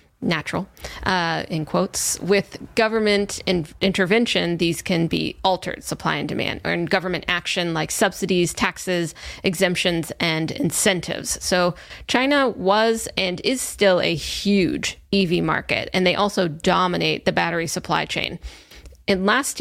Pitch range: 175-200 Hz